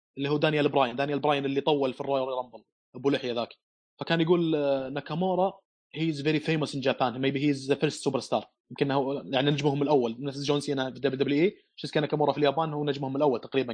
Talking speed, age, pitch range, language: 210 wpm, 20-39, 140-160 Hz, Arabic